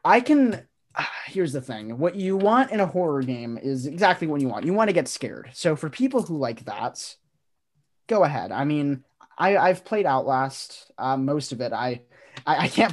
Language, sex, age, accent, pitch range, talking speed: English, male, 20-39, American, 125-170 Hz, 205 wpm